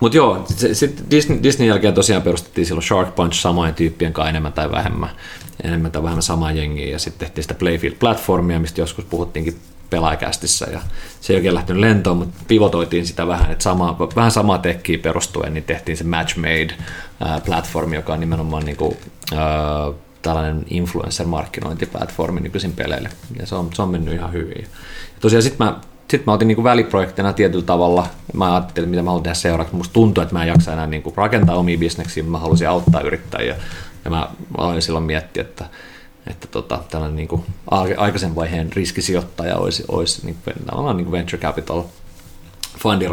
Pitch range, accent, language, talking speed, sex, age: 80-90 Hz, native, Finnish, 175 wpm, male, 30-49